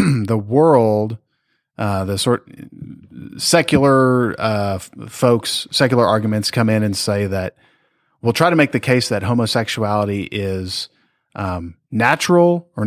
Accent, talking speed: American, 125 wpm